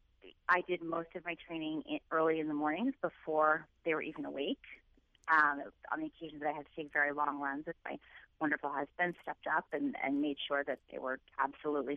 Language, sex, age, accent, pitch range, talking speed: English, female, 30-49, American, 150-180 Hz, 205 wpm